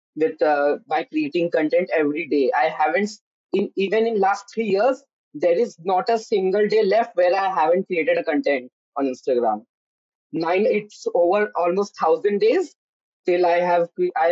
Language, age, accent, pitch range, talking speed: English, 20-39, Indian, 170-225 Hz, 170 wpm